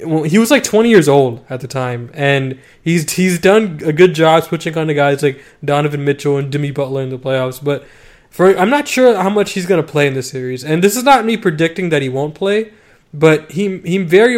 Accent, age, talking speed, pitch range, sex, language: American, 20-39, 240 wpm, 140-165 Hz, male, English